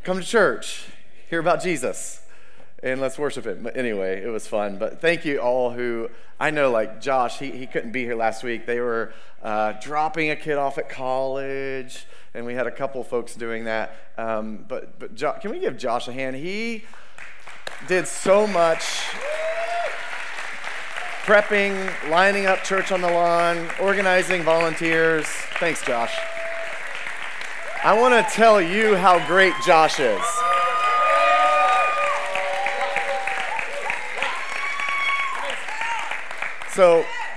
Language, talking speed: English, 135 wpm